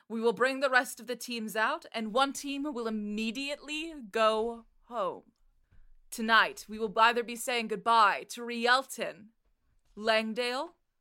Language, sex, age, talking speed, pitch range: English, female, 20-39, 140 wpm, 200-250 Hz